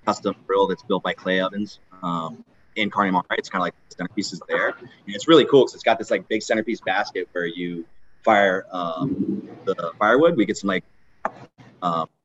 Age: 30-49